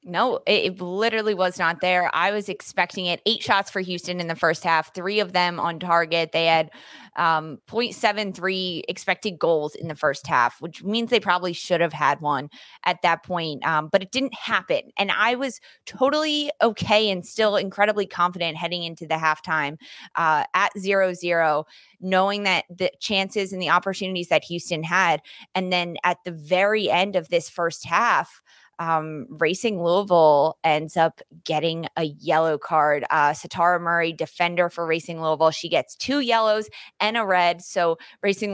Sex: female